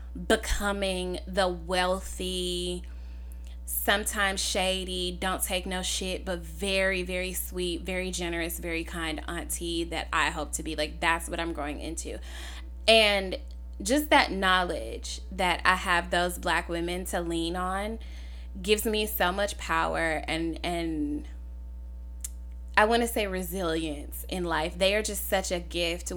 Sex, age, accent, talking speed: female, 10-29, American, 140 wpm